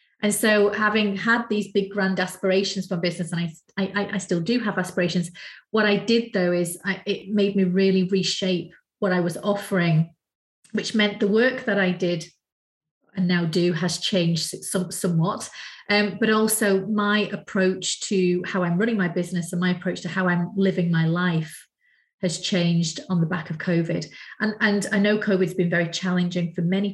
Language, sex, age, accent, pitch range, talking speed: English, female, 30-49, British, 175-205 Hz, 190 wpm